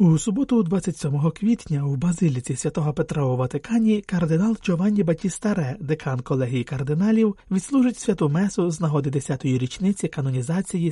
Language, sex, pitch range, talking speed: Ukrainian, male, 130-190 Hz, 130 wpm